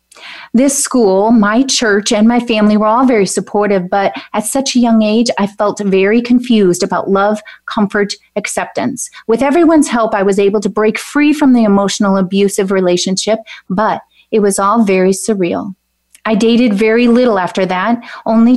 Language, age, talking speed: English, 30-49, 170 wpm